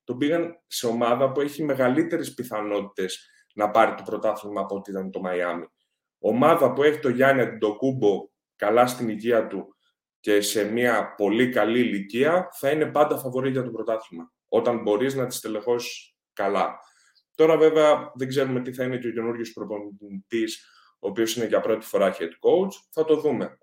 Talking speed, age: 175 wpm, 20-39